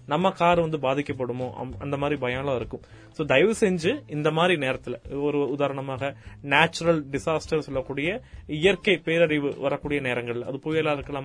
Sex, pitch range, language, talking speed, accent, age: male, 130-175 Hz, Tamil, 135 wpm, native, 30-49